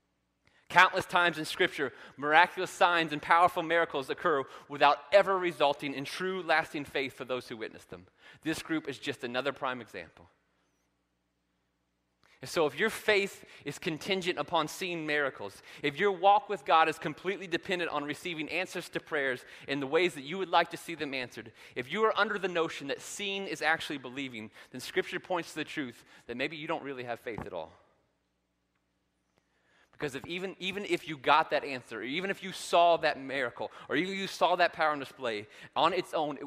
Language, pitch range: English, 125-175 Hz